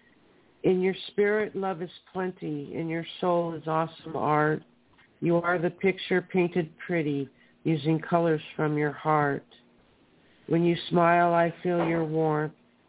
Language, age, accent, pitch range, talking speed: English, 50-69, American, 150-170 Hz, 140 wpm